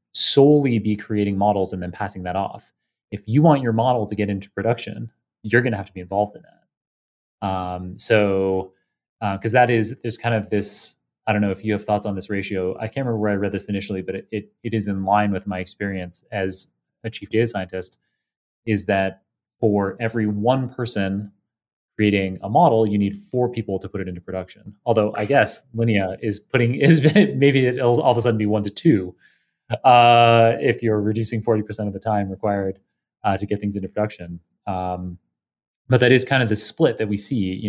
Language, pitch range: English, 100-120 Hz